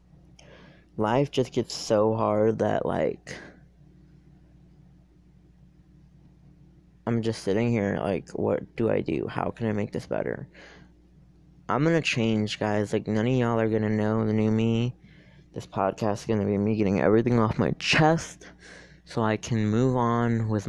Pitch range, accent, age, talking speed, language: 110-140 Hz, American, 20-39, 155 wpm, English